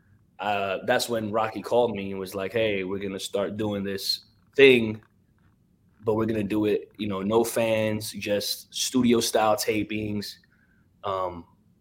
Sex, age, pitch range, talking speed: male, 20-39, 105-120 Hz, 165 wpm